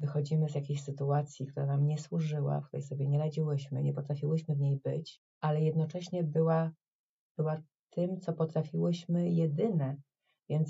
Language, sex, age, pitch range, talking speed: Polish, female, 30-49, 155-185 Hz, 150 wpm